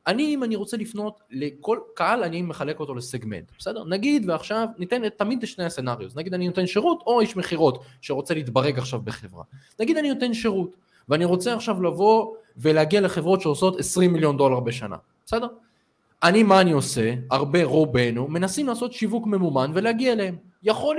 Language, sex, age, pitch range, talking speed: Hebrew, male, 20-39, 145-215 Hz, 160 wpm